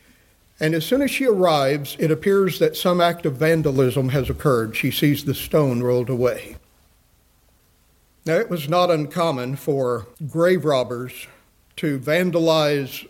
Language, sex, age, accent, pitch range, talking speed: English, male, 50-69, American, 140-170 Hz, 140 wpm